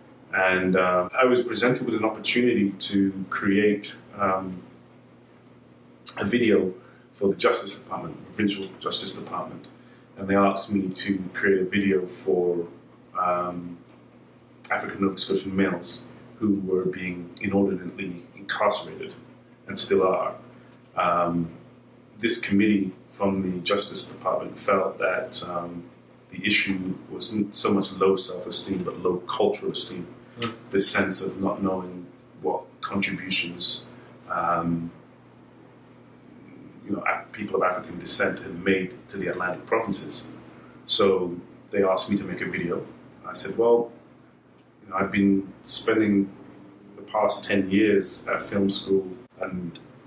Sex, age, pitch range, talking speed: male, 30-49, 90-100 Hz, 125 wpm